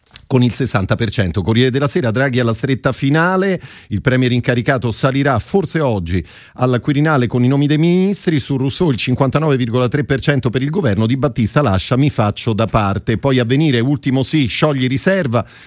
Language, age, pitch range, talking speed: Italian, 40-59, 115-145 Hz, 165 wpm